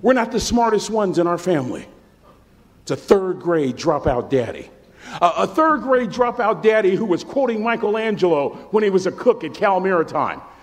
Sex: male